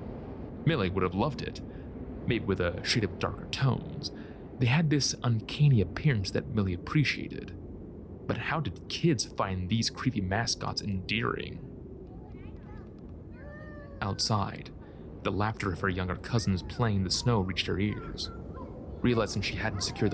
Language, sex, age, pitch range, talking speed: English, male, 30-49, 95-115 Hz, 140 wpm